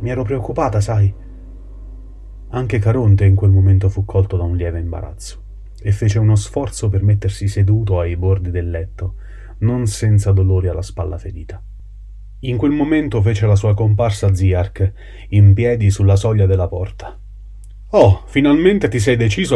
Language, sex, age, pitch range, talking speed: Italian, male, 30-49, 95-110 Hz, 155 wpm